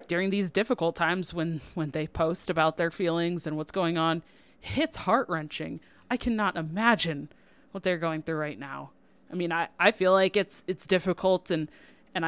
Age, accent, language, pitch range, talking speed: 20-39, American, English, 155-185 Hz, 185 wpm